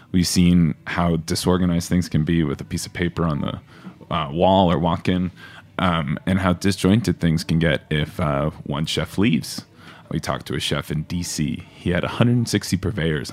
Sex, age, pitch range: male, 20-39, 85-105 Hz